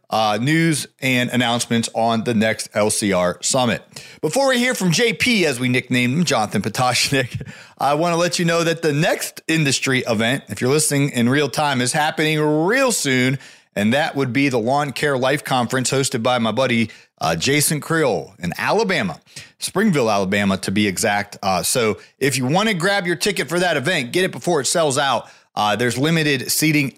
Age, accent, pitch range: 40-59, American, 115-155 Hz